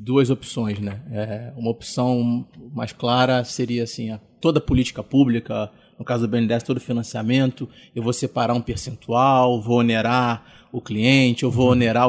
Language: Portuguese